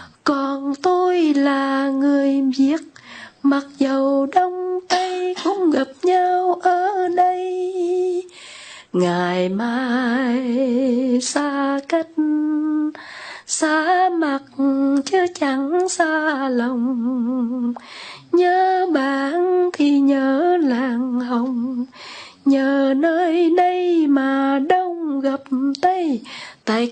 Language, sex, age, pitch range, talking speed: Vietnamese, female, 20-39, 245-310 Hz, 85 wpm